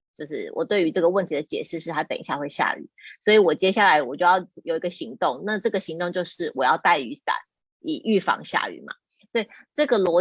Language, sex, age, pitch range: Chinese, female, 30-49, 180-245 Hz